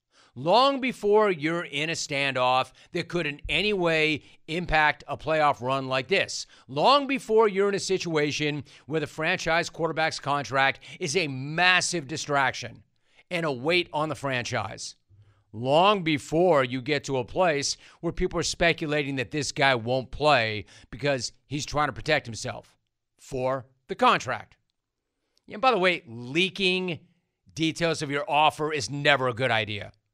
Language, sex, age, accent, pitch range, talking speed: English, male, 40-59, American, 130-175 Hz, 155 wpm